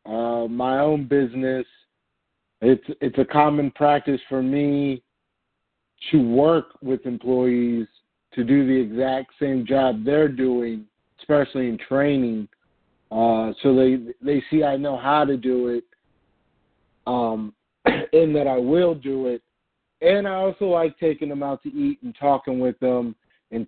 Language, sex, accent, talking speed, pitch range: English, male, American, 145 wpm, 125-150 Hz